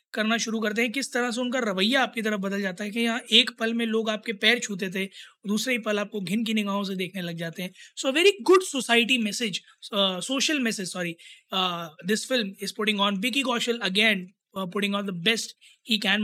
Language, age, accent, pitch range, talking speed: Hindi, 20-39, native, 200-240 Hz, 100 wpm